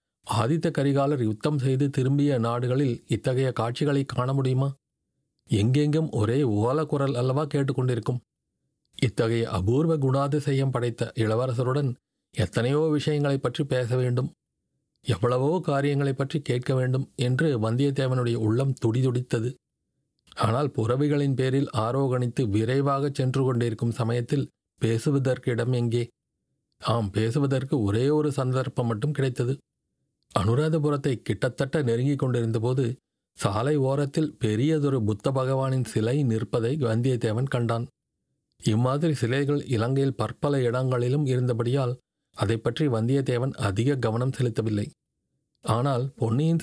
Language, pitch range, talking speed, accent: Tamil, 120-140 Hz, 100 wpm, native